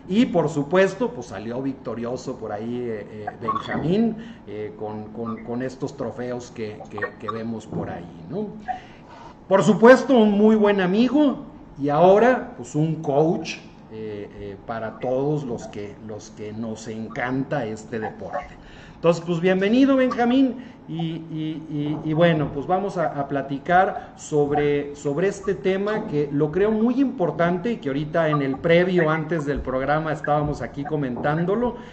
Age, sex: 40-59, male